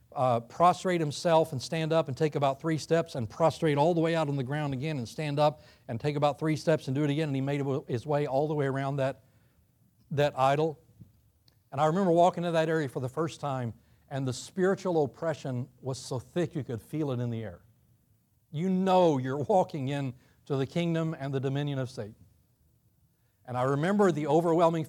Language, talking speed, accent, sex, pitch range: English, 210 wpm, American, male, 120-150 Hz